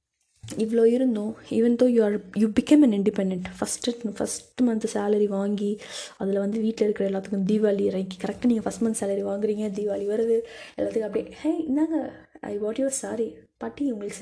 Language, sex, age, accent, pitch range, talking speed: Tamil, female, 20-39, native, 205-255 Hz, 165 wpm